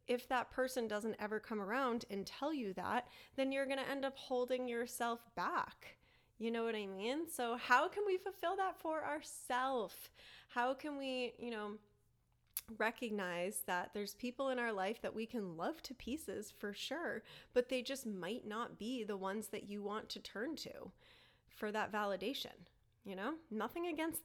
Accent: American